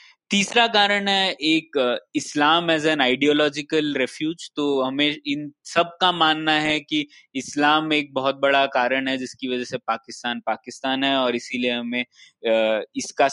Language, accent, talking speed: Hindi, native, 145 wpm